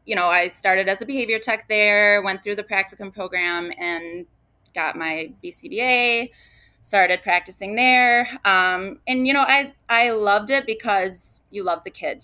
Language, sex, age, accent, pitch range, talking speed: English, female, 20-39, American, 180-235 Hz, 165 wpm